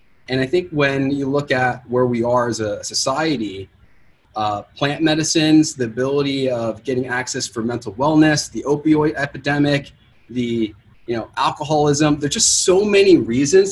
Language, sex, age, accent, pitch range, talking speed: English, male, 30-49, American, 115-155 Hz, 160 wpm